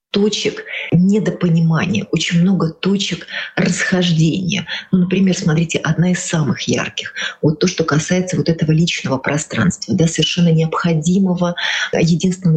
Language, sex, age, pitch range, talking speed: Russian, female, 30-49, 155-185 Hz, 125 wpm